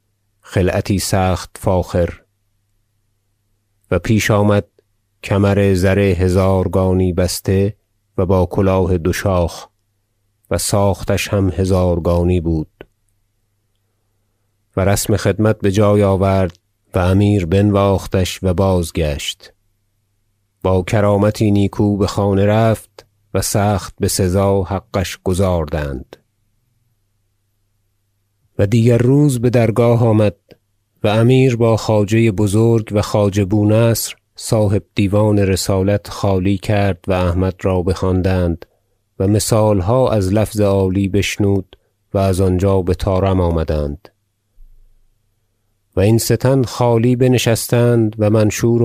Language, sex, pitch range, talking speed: Persian, male, 95-105 Hz, 105 wpm